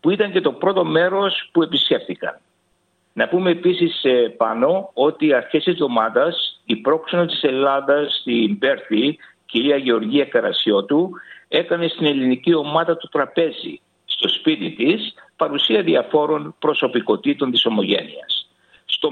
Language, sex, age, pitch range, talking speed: Greek, male, 60-79, 130-180 Hz, 125 wpm